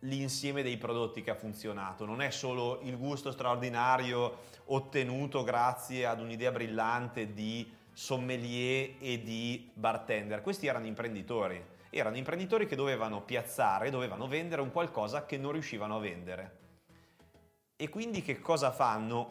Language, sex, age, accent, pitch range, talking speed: Italian, male, 30-49, native, 110-135 Hz, 135 wpm